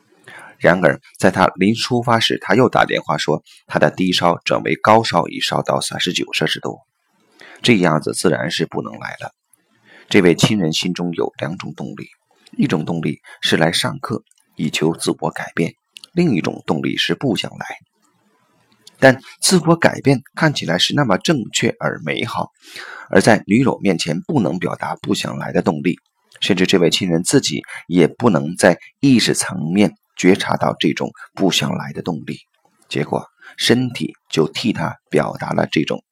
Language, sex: Chinese, male